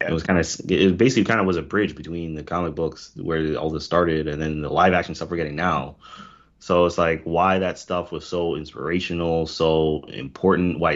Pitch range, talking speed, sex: 80-100 Hz, 220 wpm, male